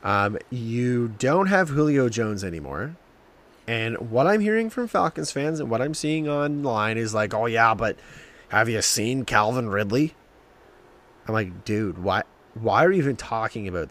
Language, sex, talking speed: English, male, 170 wpm